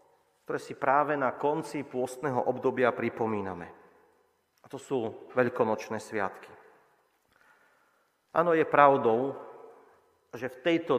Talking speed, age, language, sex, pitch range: 105 wpm, 40-59, Slovak, male, 140-195 Hz